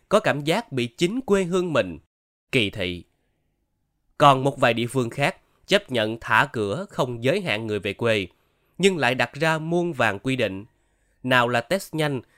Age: 20-39